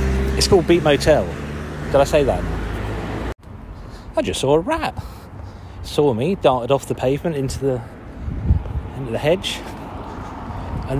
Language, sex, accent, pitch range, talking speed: English, male, British, 85-145 Hz, 135 wpm